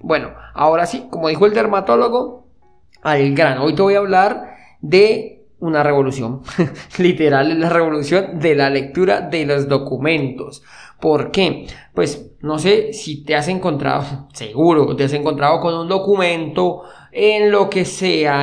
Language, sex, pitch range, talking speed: Spanish, male, 145-180 Hz, 155 wpm